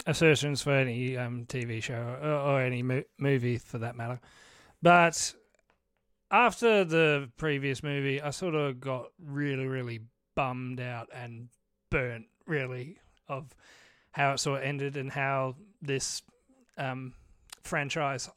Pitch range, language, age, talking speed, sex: 130-165 Hz, English, 30-49, 130 wpm, male